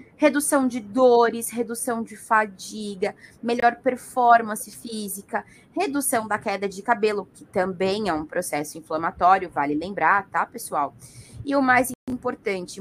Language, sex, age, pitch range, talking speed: Portuguese, female, 20-39, 190-240 Hz, 130 wpm